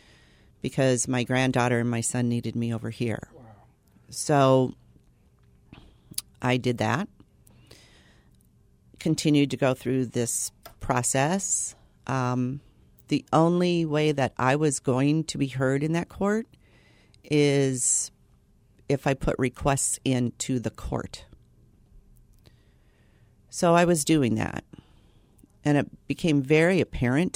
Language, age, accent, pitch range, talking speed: English, 50-69, American, 115-145 Hz, 115 wpm